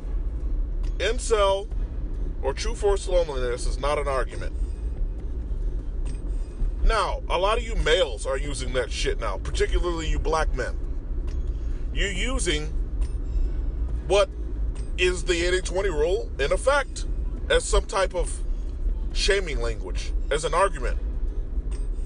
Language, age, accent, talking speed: English, 30-49, American, 115 wpm